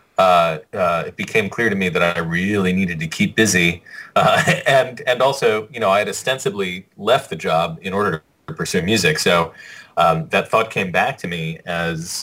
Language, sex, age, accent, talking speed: English, male, 30-49, American, 195 wpm